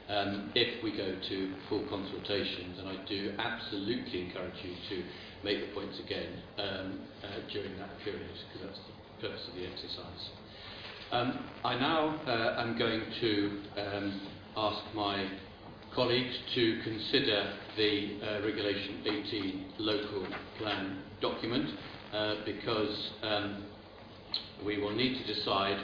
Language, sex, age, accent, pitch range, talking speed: English, male, 50-69, British, 100-115 Hz, 135 wpm